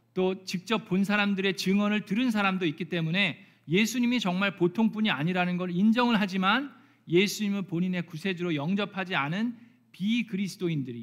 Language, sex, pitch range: Korean, male, 165-215 Hz